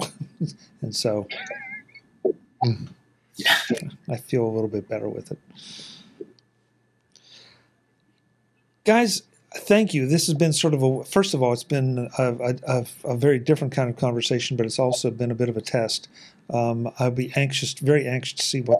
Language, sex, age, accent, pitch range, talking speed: English, male, 50-69, American, 115-130 Hz, 155 wpm